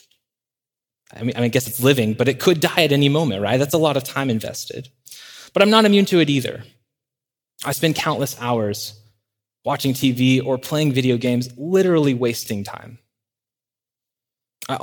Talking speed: 165 wpm